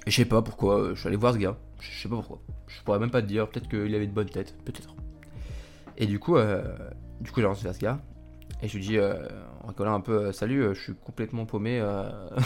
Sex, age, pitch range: male, 20-39, 100-115 Hz